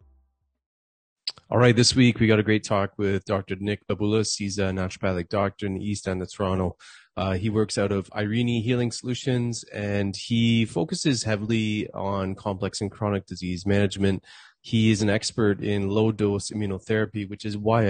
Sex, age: male, 20-39